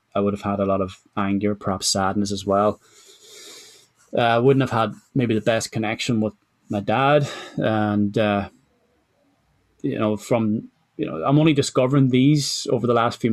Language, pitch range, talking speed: English, 105-115 Hz, 170 wpm